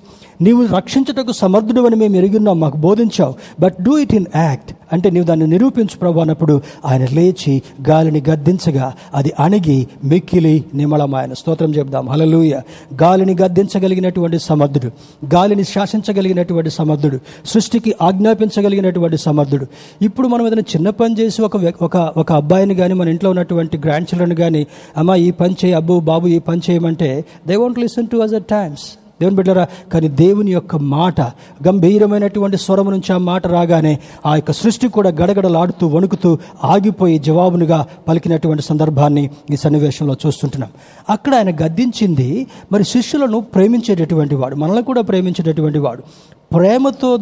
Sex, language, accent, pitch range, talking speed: male, Telugu, native, 155-205 Hz, 130 wpm